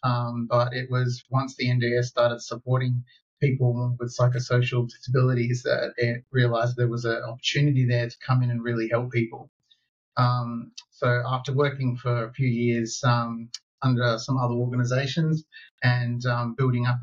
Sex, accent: male, Australian